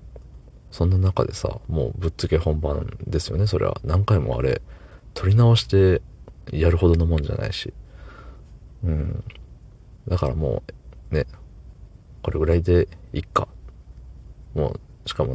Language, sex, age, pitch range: Japanese, male, 40-59, 80-100 Hz